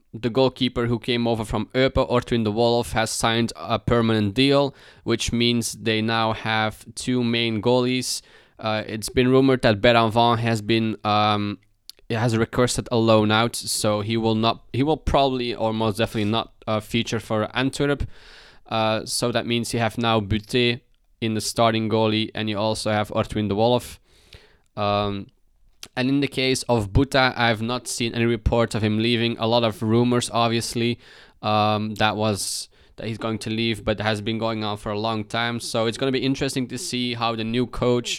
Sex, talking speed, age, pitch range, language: male, 190 wpm, 20-39, 110-120 Hz, English